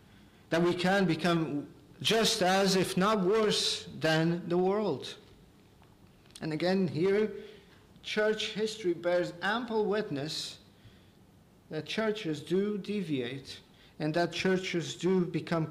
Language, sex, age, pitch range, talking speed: English, male, 50-69, 150-195 Hz, 110 wpm